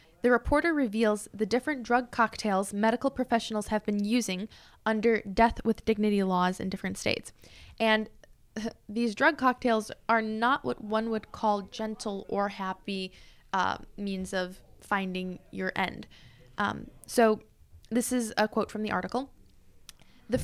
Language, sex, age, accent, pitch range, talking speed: English, female, 10-29, American, 200-230 Hz, 145 wpm